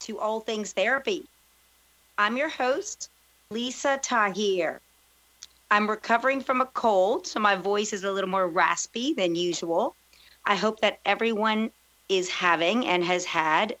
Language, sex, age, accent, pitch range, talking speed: English, female, 40-59, American, 180-230 Hz, 145 wpm